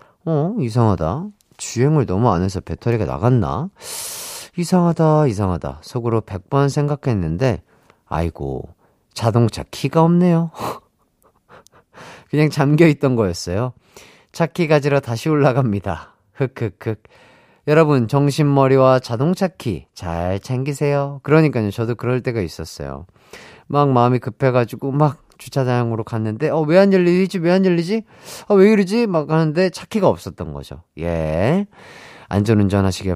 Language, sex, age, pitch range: Korean, male, 40-59, 100-155 Hz